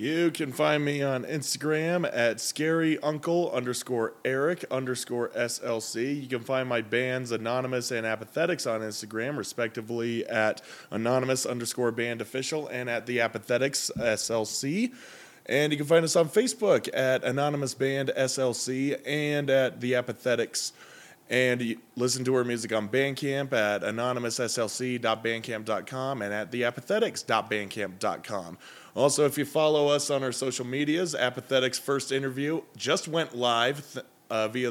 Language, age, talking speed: English, 20-39, 135 wpm